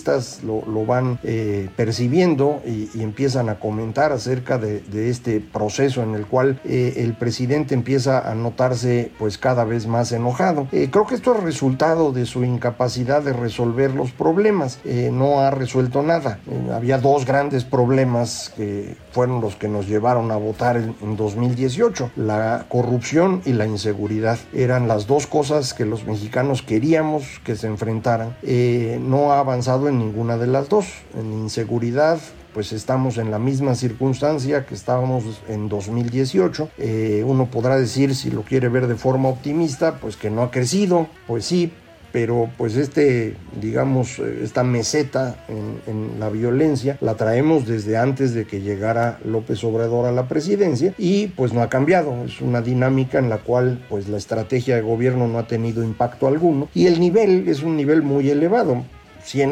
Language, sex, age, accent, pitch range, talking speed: Spanish, male, 50-69, Mexican, 115-140 Hz, 170 wpm